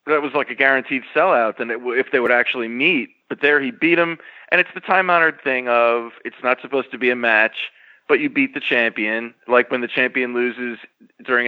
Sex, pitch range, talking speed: male, 120-190 Hz, 225 wpm